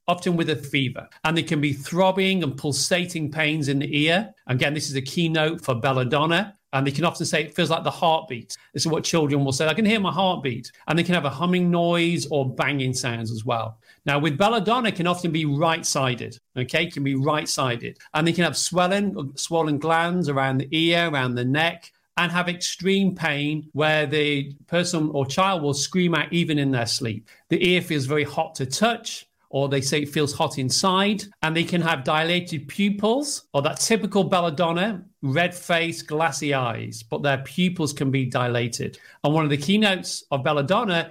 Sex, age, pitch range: male, 40-59, 135-170 Hz